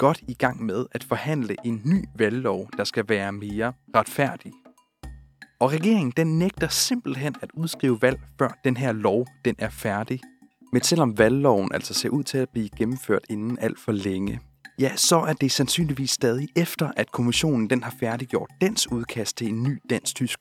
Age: 30-49